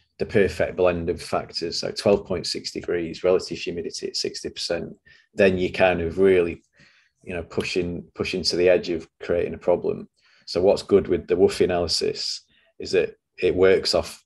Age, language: 30-49, English